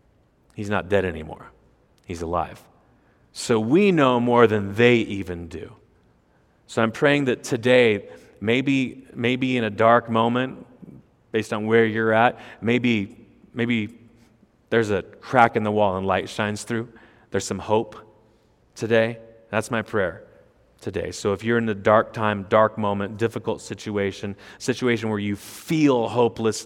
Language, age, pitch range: English, 30-49, 95-115 Hz